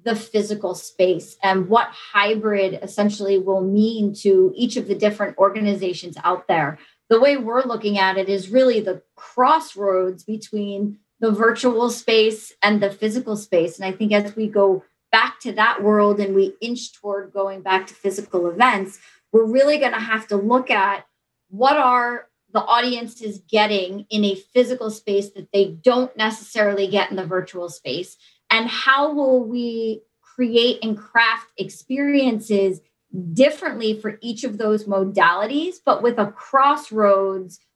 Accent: American